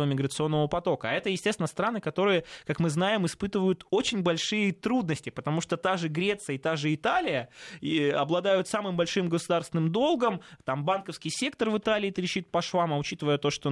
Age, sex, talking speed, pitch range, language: 20-39, male, 175 wpm, 135-180 Hz, Russian